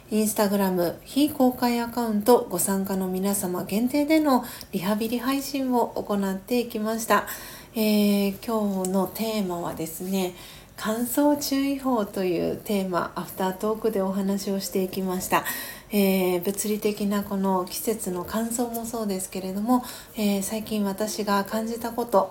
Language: Japanese